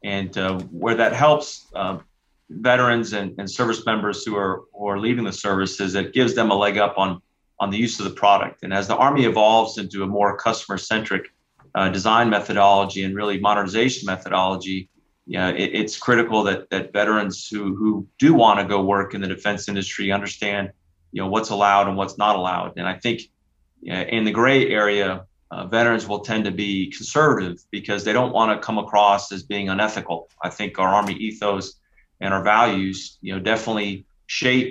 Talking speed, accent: 195 wpm, American